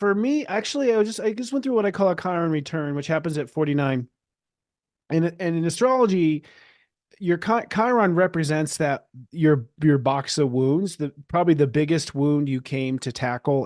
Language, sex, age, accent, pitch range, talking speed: English, male, 30-49, American, 130-170 Hz, 190 wpm